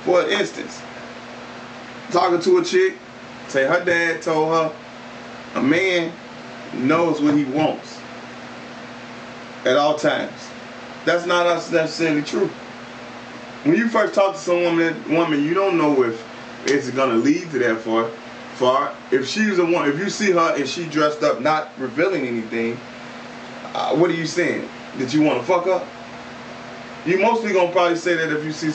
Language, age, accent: English, 20-39, American